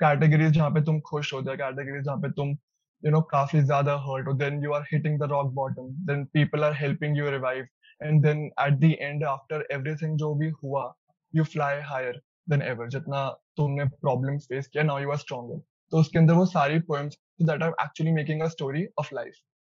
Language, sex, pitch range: Hindi, male, 145-170 Hz